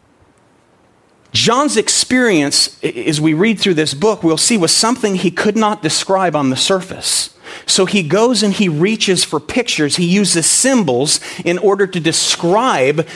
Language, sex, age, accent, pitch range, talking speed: English, male, 40-59, American, 140-190 Hz, 155 wpm